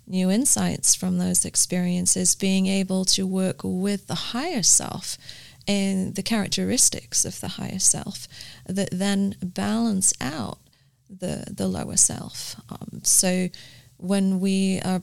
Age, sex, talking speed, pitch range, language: 30-49, female, 130 wpm, 145-195 Hz, English